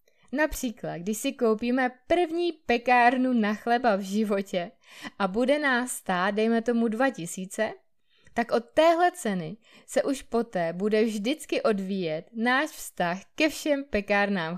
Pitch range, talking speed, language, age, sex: 190-255 Hz, 130 wpm, Czech, 20-39, female